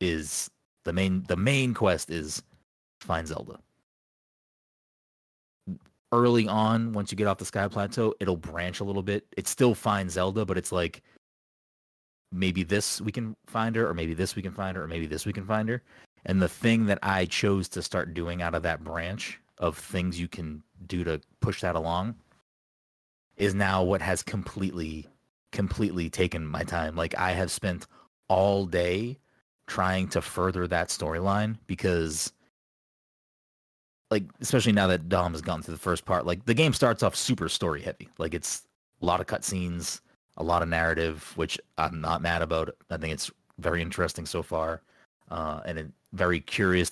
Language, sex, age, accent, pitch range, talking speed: English, male, 30-49, American, 85-100 Hz, 180 wpm